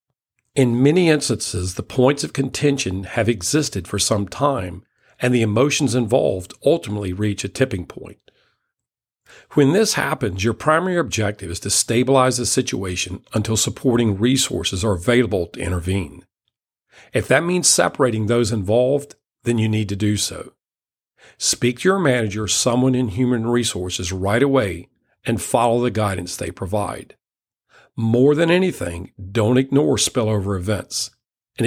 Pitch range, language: 100-130 Hz, English